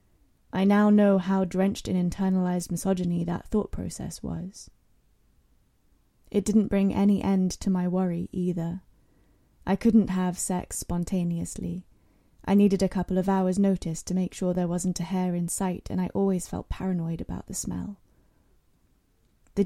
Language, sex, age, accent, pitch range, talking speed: English, female, 20-39, British, 175-195 Hz, 155 wpm